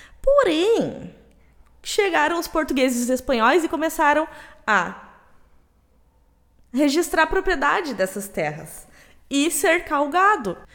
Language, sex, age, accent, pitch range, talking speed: Portuguese, female, 20-39, Brazilian, 235-325 Hz, 105 wpm